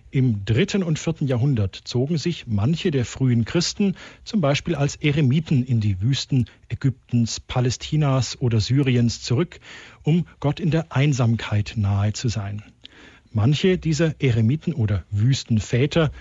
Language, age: German, 50-69